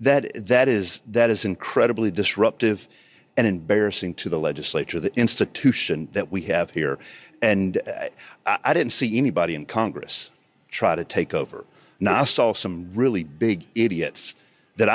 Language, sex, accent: English, male, American